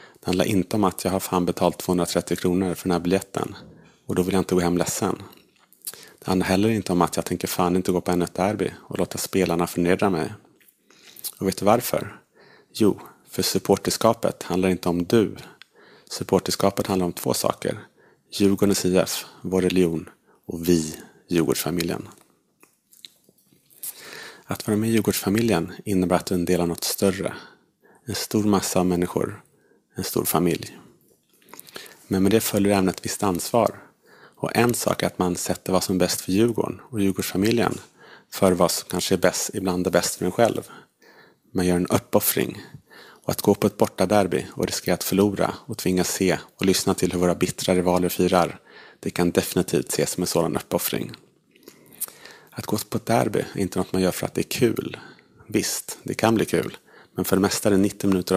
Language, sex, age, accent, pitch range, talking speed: English, male, 30-49, Norwegian, 90-100 Hz, 185 wpm